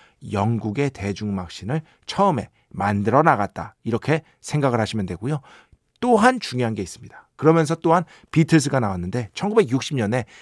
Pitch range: 115-160 Hz